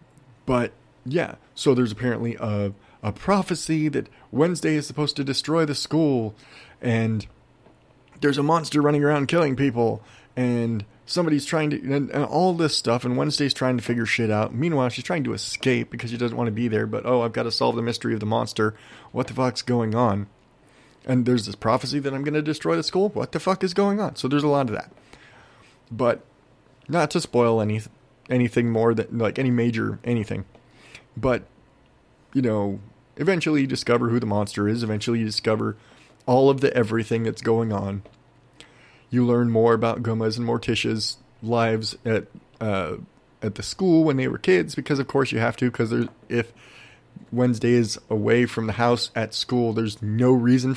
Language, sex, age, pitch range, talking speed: English, male, 30-49, 115-140 Hz, 190 wpm